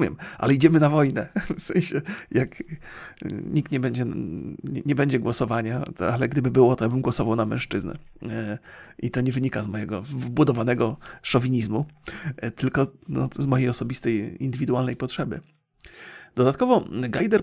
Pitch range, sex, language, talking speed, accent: 120-155 Hz, male, Polish, 140 wpm, native